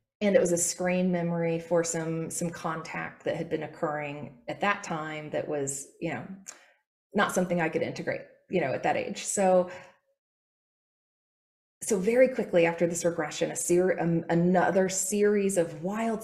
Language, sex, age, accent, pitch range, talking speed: English, female, 20-39, American, 160-180 Hz, 165 wpm